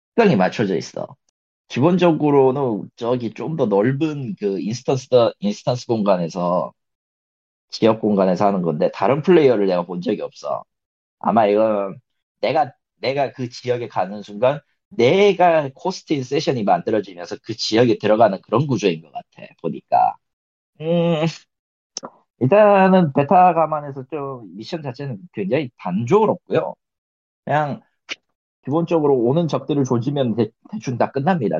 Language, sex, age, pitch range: Korean, male, 40-59, 110-165 Hz